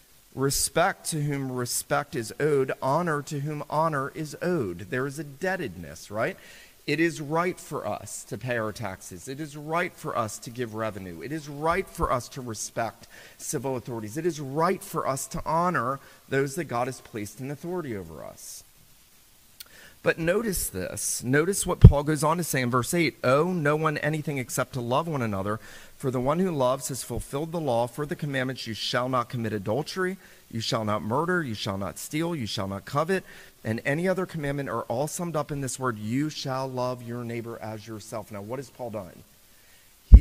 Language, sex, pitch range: English, male, 115-155 Hz